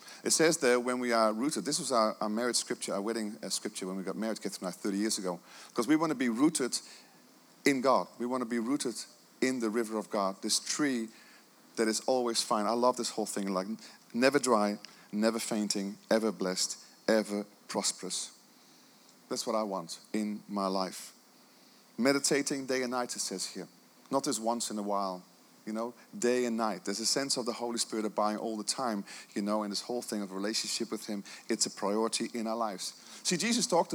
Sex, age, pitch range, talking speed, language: male, 40-59, 105-140 Hz, 210 wpm, English